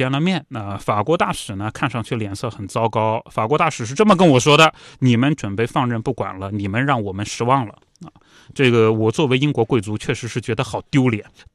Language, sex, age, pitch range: Chinese, male, 20-39, 110-165 Hz